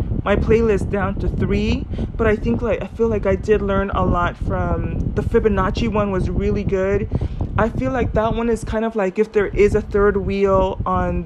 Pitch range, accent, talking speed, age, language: 180-215 Hz, American, 215 wpm, 20-39, English